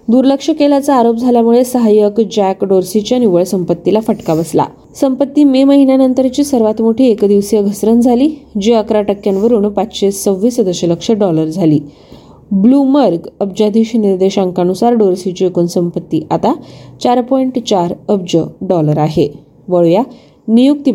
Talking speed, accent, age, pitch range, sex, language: 90 wpm, native, 20-39, 185-260 Hz, female, Marathi